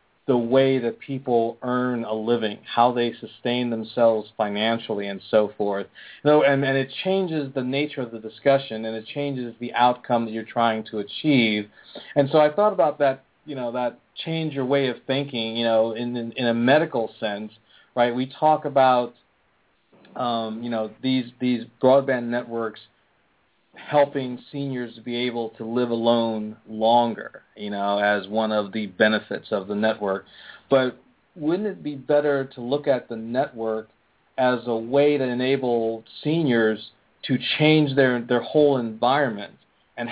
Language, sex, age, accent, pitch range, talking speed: English, male, 40-59, American, 115-135 Hz, 170 wpm